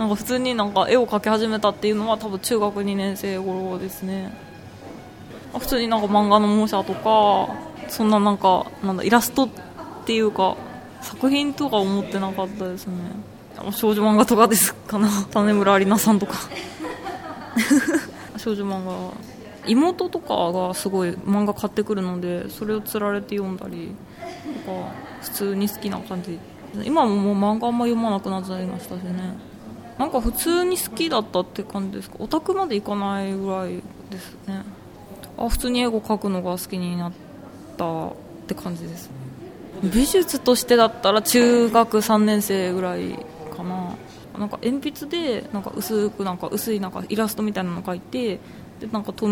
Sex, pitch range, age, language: female, 190-225 Hz, 20-39, Japanese